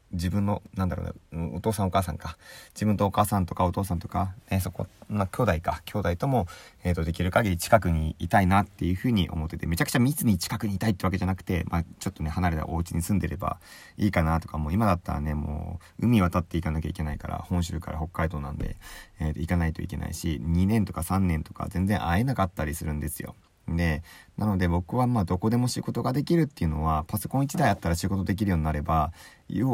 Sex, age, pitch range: male, 30-49, 80-100 Hz